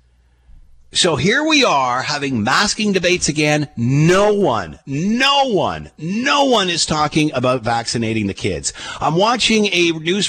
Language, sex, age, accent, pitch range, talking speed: English, male, 50-69, American, 100-160 Hz, 140 wpm